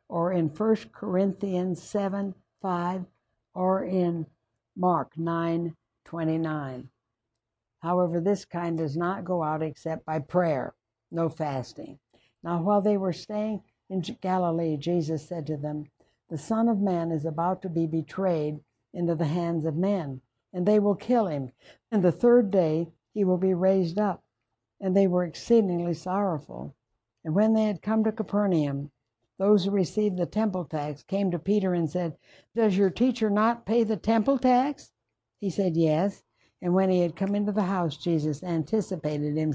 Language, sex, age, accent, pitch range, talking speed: English, female, 60-79, American, 155-205 Hz, 165 wpm